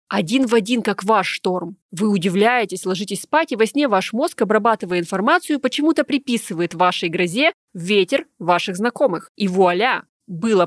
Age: 20-39